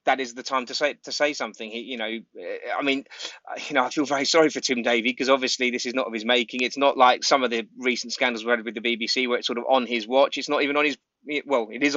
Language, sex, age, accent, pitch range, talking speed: English, male, 20-39, British, 115-140 Hz, 290 wpm